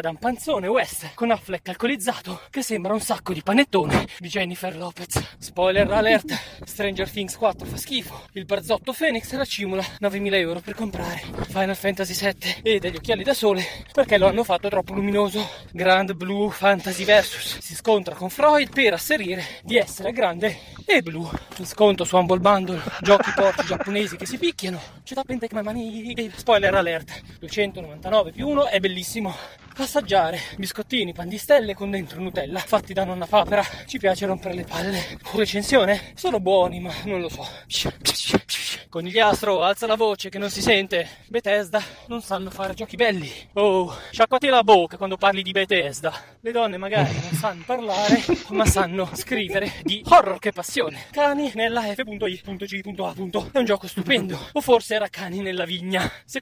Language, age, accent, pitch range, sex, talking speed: Italian, 20-39, native, 185-220 Hz, male, 165 wpm